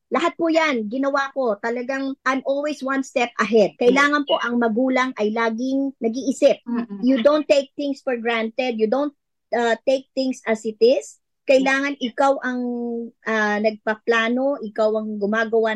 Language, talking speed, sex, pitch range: Filipino, 150 wpm, male, 200-260 Hz